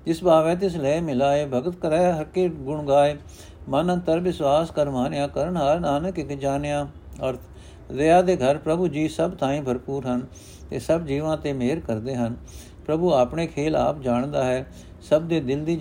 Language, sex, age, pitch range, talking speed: Punjabi, male, 60-79, 120-160 Hz, 185 wpm